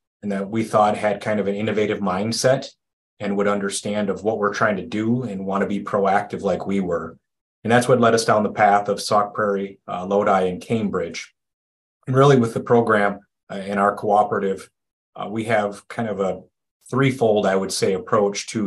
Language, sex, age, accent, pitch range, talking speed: English, male, 30-49, American, 100-115 Hz, 205 wpm